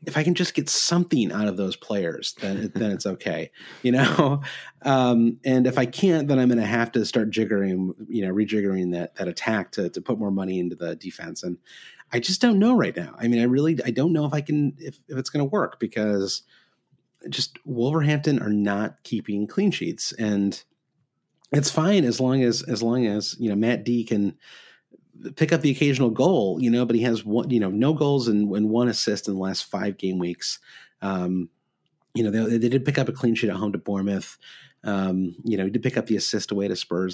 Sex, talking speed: male, 225 wpm